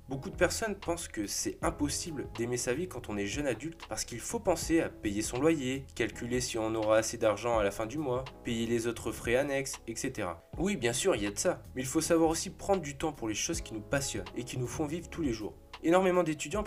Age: 20-39